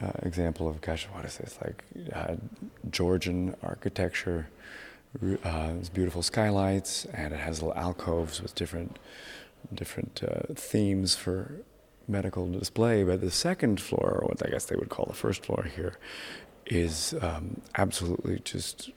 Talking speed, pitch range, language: 150 wpm, 85-95 Hz, English